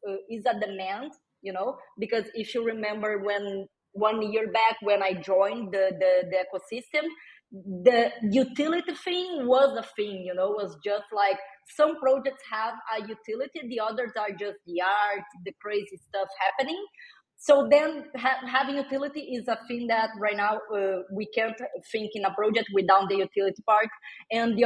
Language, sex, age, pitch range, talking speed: English, female, 20-39, 200-240 Hz, 170 wpm